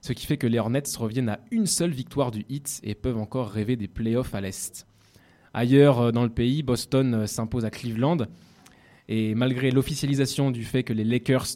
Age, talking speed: 20-39, 190 wpm